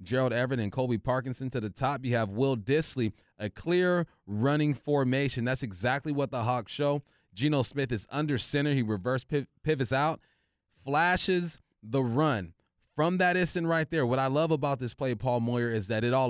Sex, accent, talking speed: male, American, 190 wpm